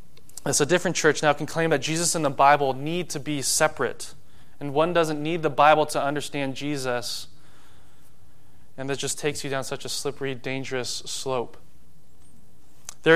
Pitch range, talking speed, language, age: 140-170 Hz, 175 wpm, English, 20-39